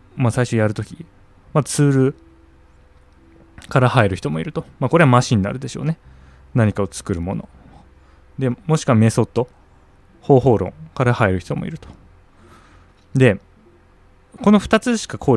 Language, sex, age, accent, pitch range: Japanese, male, 20-39, native, 90-130 Hz